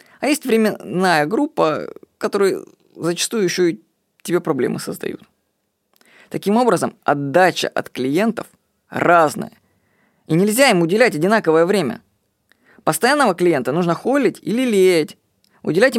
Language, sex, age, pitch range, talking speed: Russian, female, 20-39, 155-205 Hz, 115 wpm